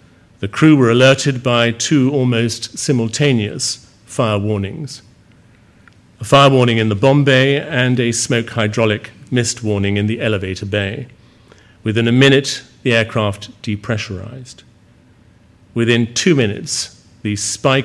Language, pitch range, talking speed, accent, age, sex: English, 110-125 Hz, 130 wpm, British, 50-69, male